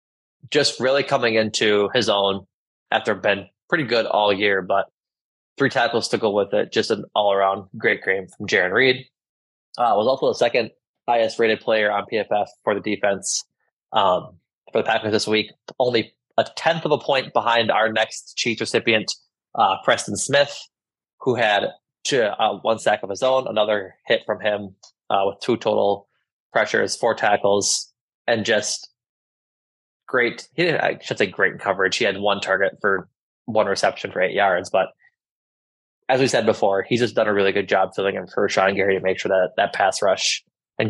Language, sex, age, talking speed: English, male, 20-39, 185 wpm